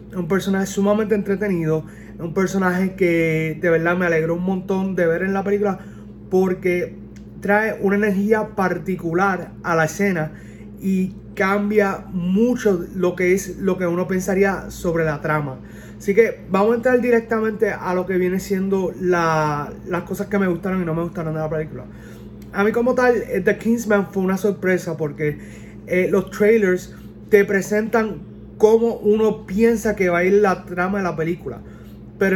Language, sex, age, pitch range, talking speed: Spanish, male, 30-49, 170-205 Hz, 170 wpm